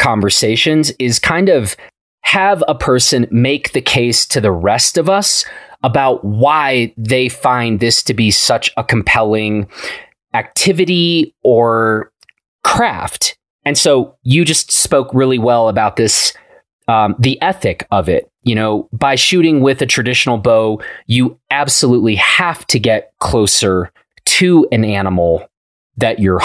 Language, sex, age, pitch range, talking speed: English, male, 30-49, 110-145 Hz, 140 wpm